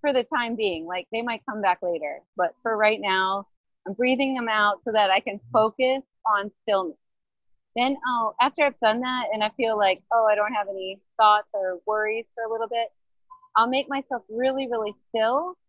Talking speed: 205 wpm